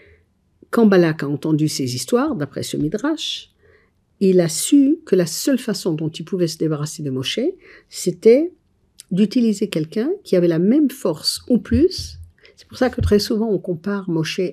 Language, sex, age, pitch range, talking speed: French, female, 60-79, 155-215 Hz, 175 wpm